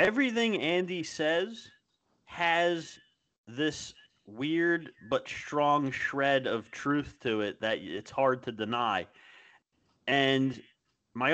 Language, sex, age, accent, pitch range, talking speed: English, male, 30-49, American, 115-150 Hz, 105 wpm